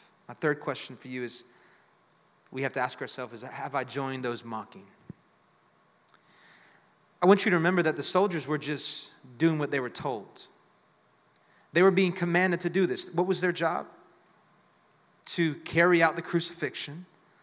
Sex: male